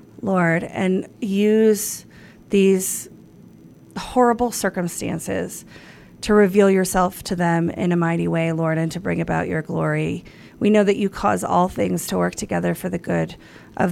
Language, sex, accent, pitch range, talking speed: English, female, American, 180-200 Hz, 155 wpm